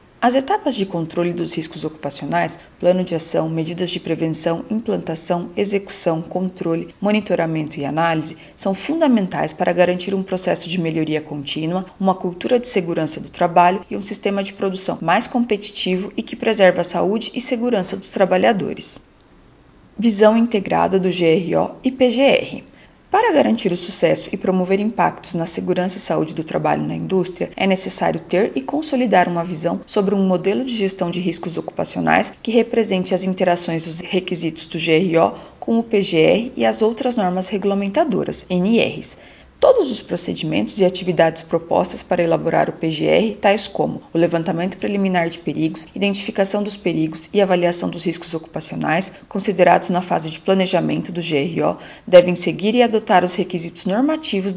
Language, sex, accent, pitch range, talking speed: Portuguese, female, Brazilian, 170-210 Hz, 155 wpm